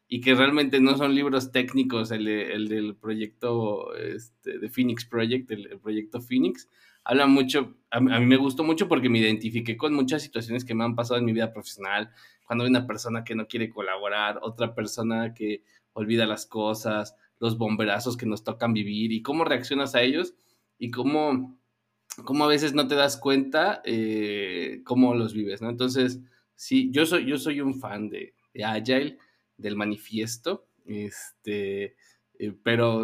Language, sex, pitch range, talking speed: Spanish, male, 105-130 Hz, 175 wpm